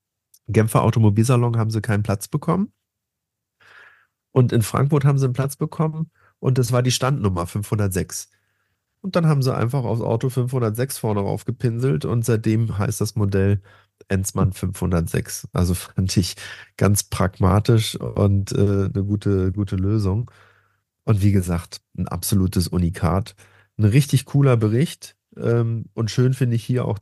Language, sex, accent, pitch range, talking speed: German, male, German, 100-125 Hz, 145 wpm